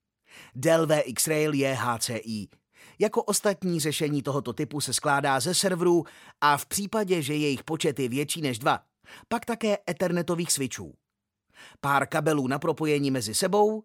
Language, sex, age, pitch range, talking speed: Czech, male, 30-49, 135-175 Hz, 145 wpm